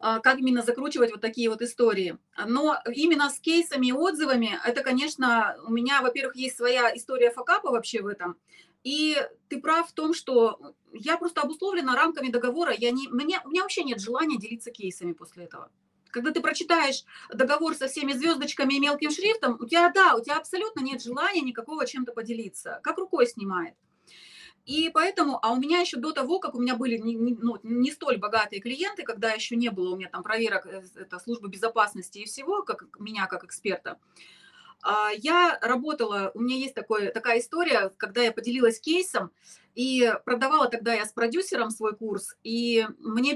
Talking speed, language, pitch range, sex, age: 175 wpm, Russian, 225-310 Hz, female, 30-49